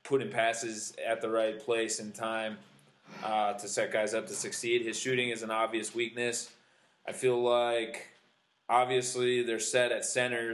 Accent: American